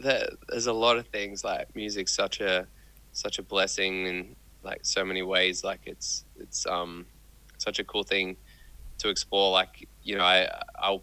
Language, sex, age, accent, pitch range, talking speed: English, male, 20-39, Australian, 90-100 Hz, 175 wpm